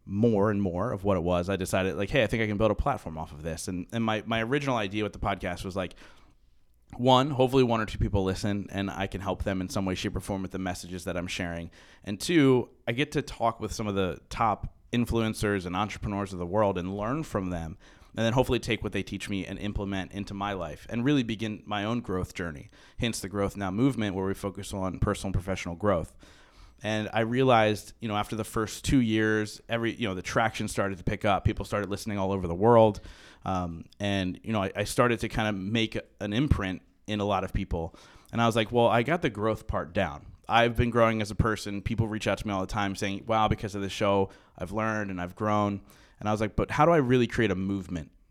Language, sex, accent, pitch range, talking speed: English, male, American, 95-115 Hz, 250 wpm